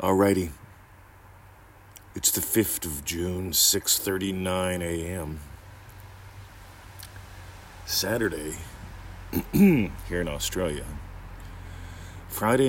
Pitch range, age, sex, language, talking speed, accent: 80-100 Hz, 40-59, male, English, 55 wpm, American